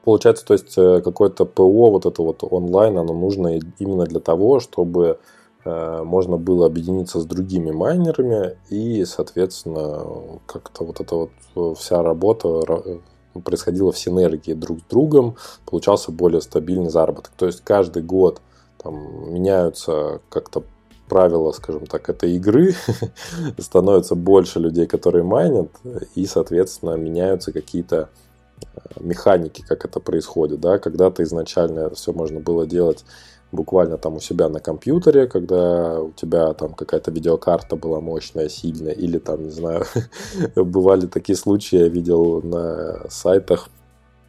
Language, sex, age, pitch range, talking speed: Russian, male, 20-39, 80-95 Hz, 130 wpm